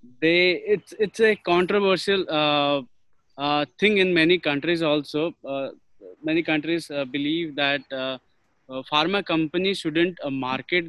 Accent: Indian